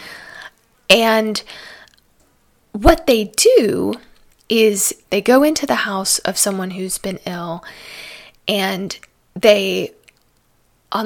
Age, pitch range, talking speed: 20-39, 195-230 Hz, 100 wpm